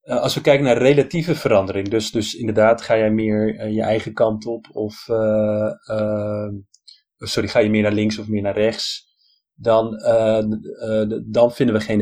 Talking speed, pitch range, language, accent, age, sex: 180 wpm, 100-110 Hz, Dutch, Dutch, 30-49, male